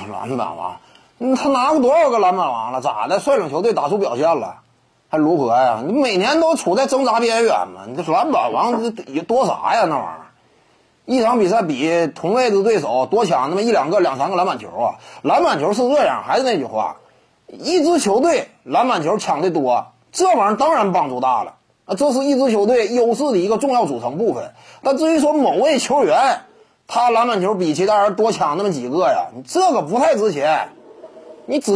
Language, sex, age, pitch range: Chinese, male, 30-49, 200-295 Hz